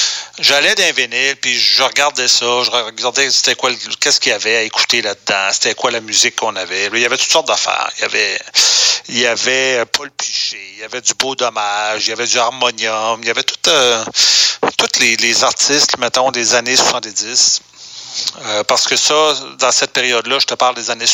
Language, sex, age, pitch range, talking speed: French, male, 40-59, 120-150 Hz, 200 wpm